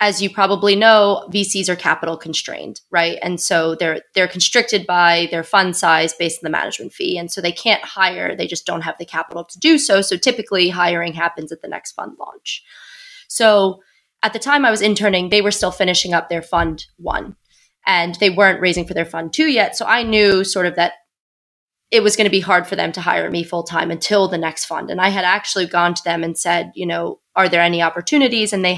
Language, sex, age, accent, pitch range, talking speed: English, female, 20-39, American, 170-205 Hz, 225 wpm